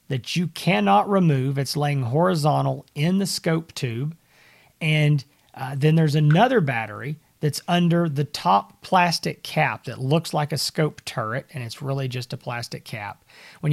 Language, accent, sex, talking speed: English, American, male, 160 wpm